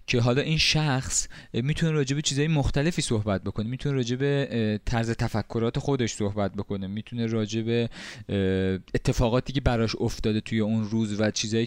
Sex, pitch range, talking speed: male, 110-140 Hz, 145 wpm